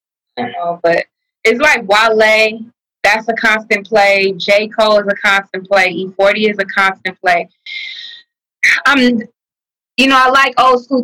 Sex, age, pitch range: female, 20-39, 185-225 Hz